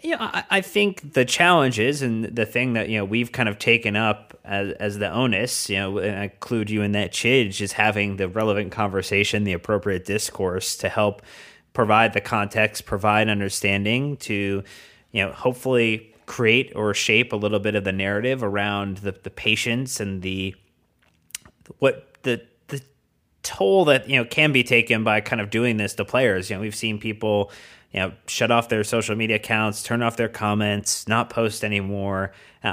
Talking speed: 190 wpm